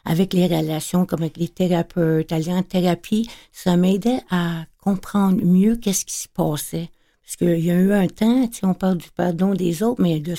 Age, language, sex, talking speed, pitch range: 60-79, French, female, 195 wpm, 170-210 Hz